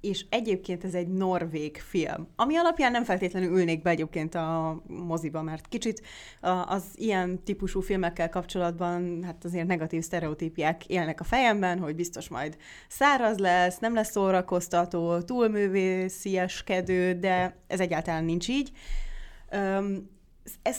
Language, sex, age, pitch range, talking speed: Hungarian, female, 30-49, 170-200 Hz, 130 wpm